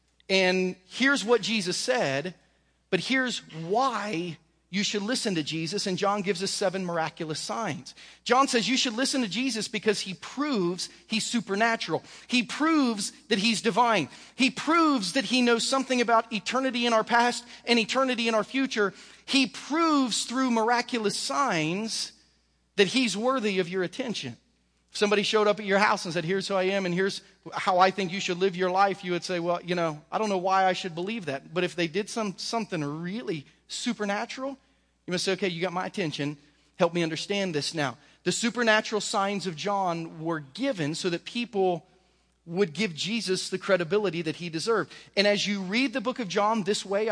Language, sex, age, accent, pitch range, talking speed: English, male, 40-59, American, 180-230 Hz, 190 wpm